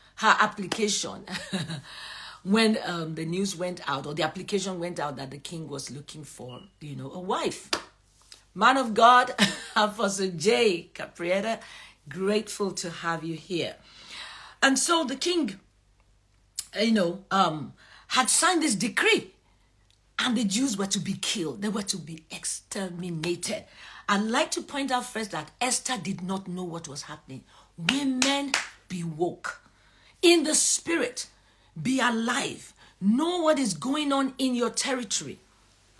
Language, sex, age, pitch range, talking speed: English, female, 50-69, 180-255 Hz, 145 wpm